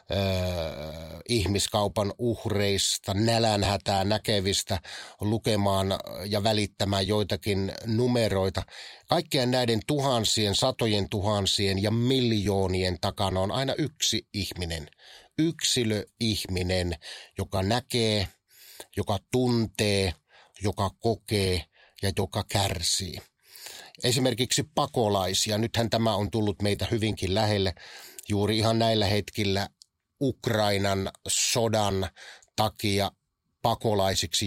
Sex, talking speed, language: male, 85 wpm, Finnish